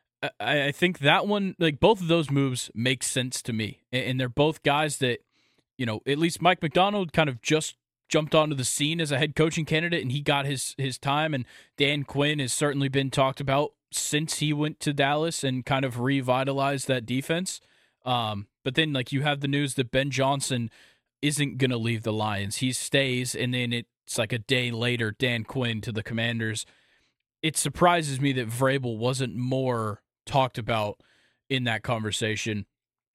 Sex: male